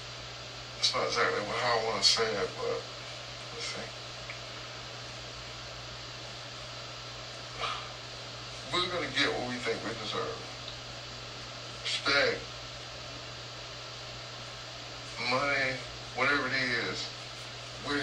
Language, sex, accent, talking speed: English, male, American, 90 wpm